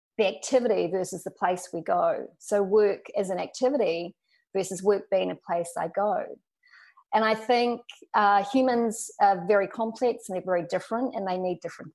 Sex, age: female, 30-49